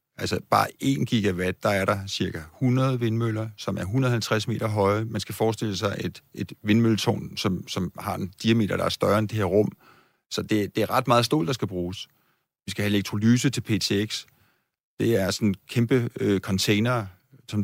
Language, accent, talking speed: Danish, native, 190 wpm